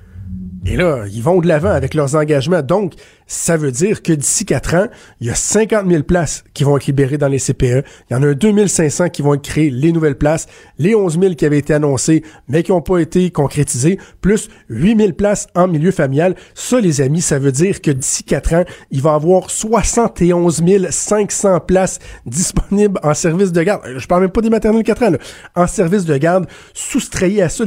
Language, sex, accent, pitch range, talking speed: French, male, Canadian, 140-185 Hz, 215 wpm